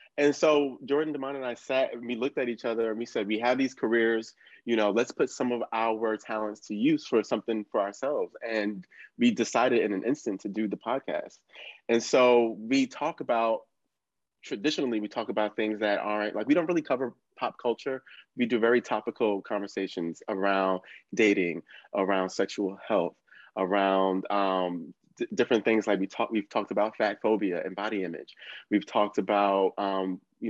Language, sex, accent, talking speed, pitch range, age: English, male, American, 185 wpm, 95-115 Hz, 20-39